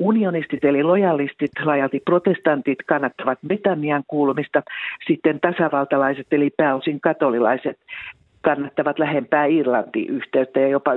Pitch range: 140-165 Hz